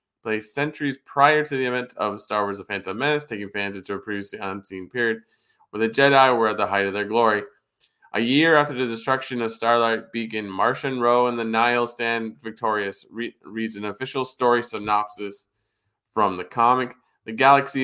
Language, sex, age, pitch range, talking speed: English, male, 20-39, 110-135 Hz, 180 wpm